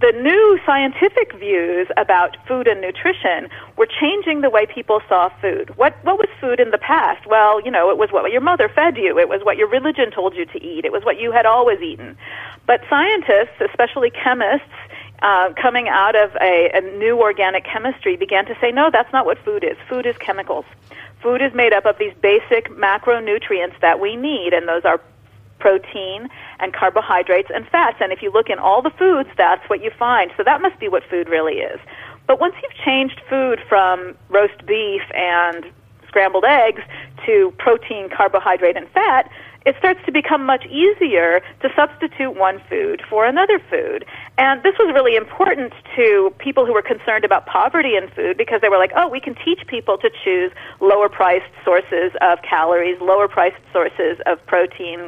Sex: female